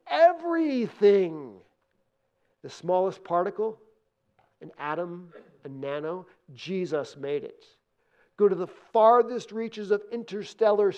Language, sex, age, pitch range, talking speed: English, male, 50-69, 150-215 Hz, 100 wpm